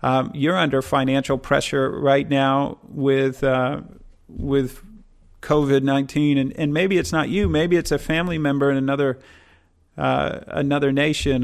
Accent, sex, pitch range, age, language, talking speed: American, male, 140-165 Hz, 40-59, English, 145 wpm